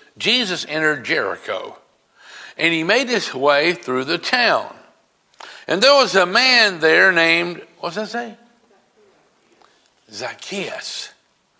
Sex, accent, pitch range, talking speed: male, American, 170-235 Hz, 115 wpm